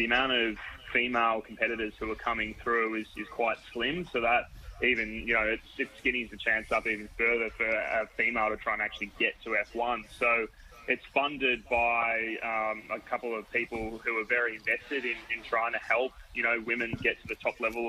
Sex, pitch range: male, 115-125 Hz